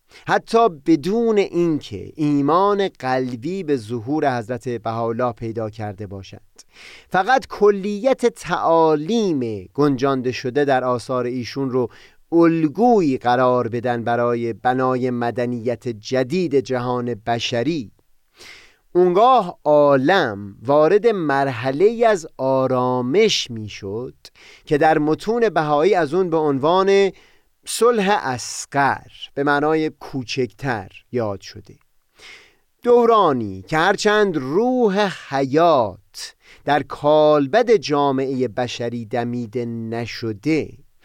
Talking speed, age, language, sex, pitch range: 90 wpm, 30-49, Persian, male, 125-185 Hz